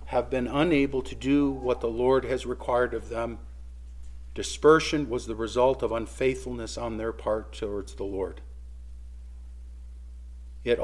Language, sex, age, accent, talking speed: English, male, 50-69, American, 140 wpm